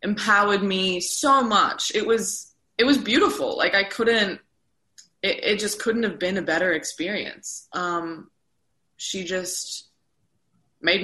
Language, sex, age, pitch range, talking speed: English, female, 20-39, 165-210 Hz, 135 wpm